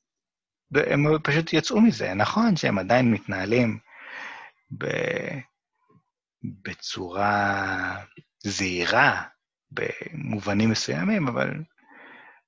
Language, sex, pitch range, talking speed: Hebrew, male, 110-160 Hz, 65 wpm